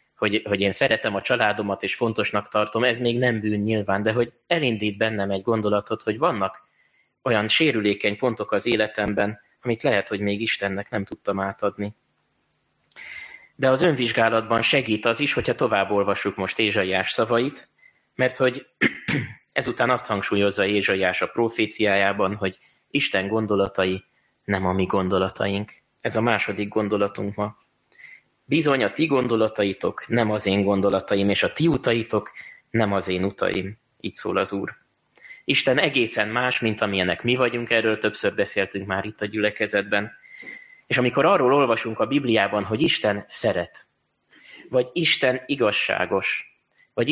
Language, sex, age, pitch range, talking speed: Hungarian, male, 20-39, 100-120 Hz, 145 wpm